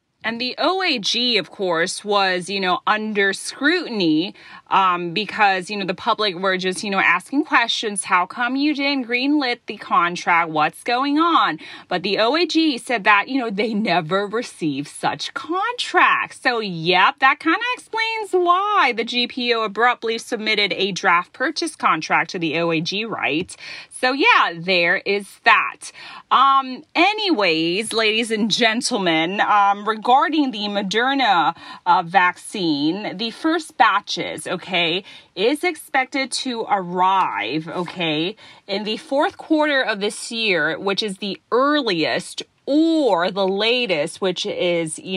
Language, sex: Thai, female